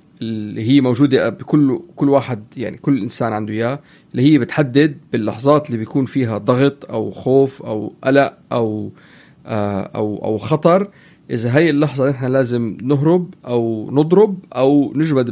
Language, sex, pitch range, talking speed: Arabic, male, 120-155 Hz, 145 wpm